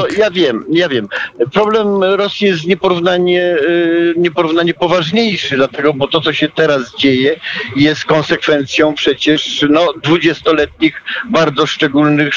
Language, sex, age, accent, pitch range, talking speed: Polish, male, 50-69, native, 130-165 Hz, 110 wpm